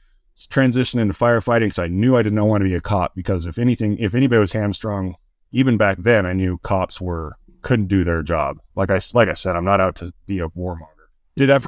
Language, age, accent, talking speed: English, 30-49, American, 235 wpm